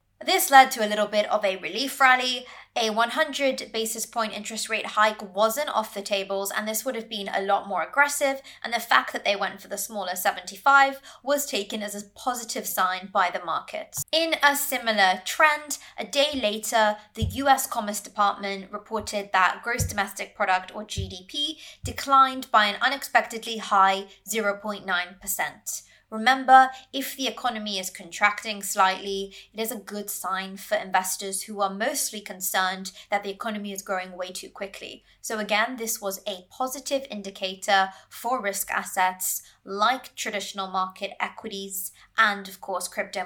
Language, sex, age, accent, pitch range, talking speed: English, female, 20-39, British, 195-255 Hz, 160 wpm